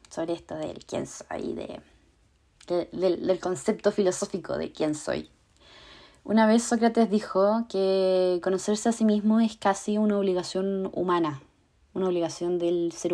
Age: 20-39